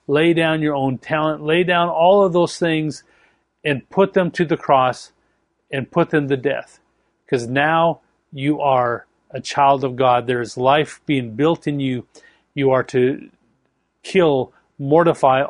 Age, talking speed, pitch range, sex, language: 40-59, 165 wpm, 140-165 Hz, male, English